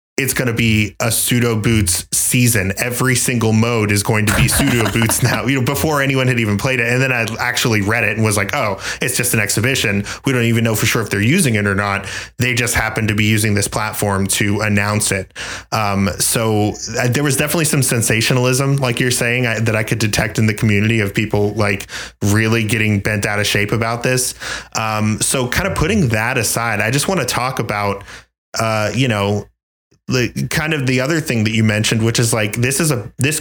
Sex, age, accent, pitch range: male, 20-39, American, 105-125 Hz